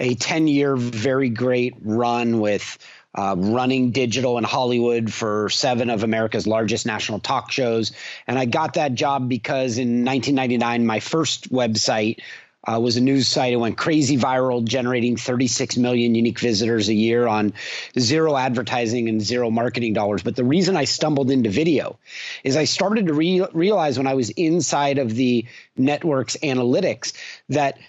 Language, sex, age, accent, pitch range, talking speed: English, male, 30-49, American, 120-160 Hz, 160 wpm